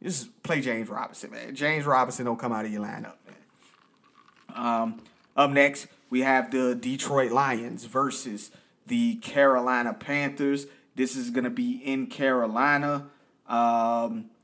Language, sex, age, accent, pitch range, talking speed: English, male, 30-49, American, 125-145 Hz, 140 wpm